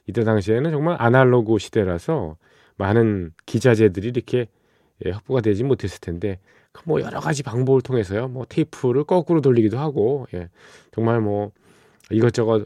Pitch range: 100-130 Hz